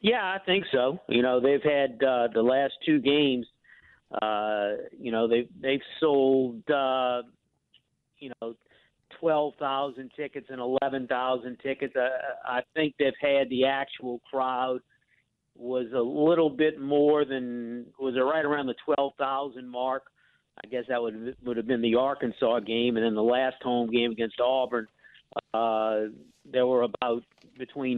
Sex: male